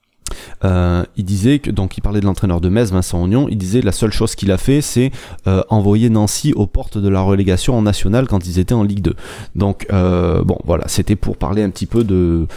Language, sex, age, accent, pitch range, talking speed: French, male, 30-49, French, 95-115 Hz, 240 wpm